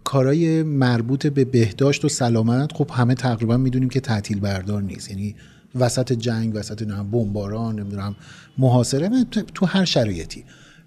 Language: Persian